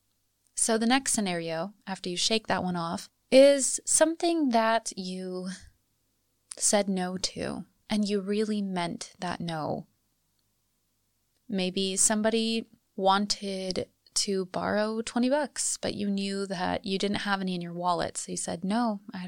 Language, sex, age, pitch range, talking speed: English, female, 20-39, 125-205 Hz, 145 wpm